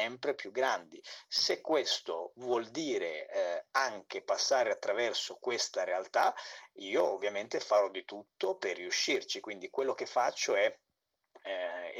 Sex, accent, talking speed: male, native, 125 wpm